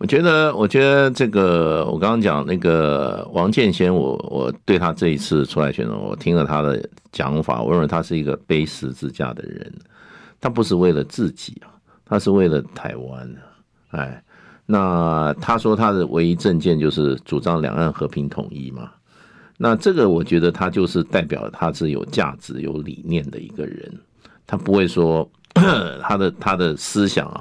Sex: male